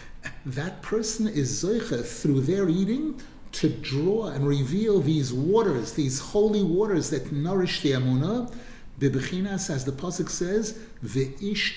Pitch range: 130-185 Hz